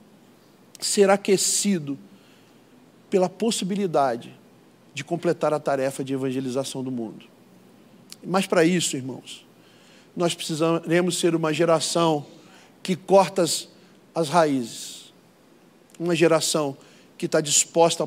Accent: Brazilian